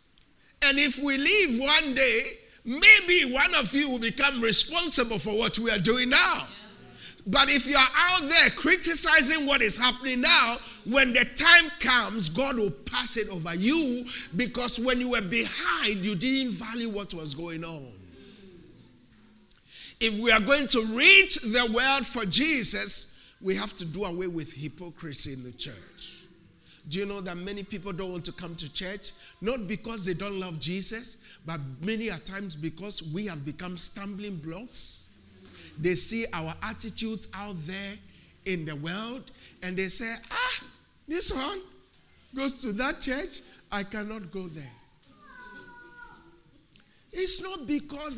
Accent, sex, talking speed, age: Nigerian, male, 155 wpm, 50-69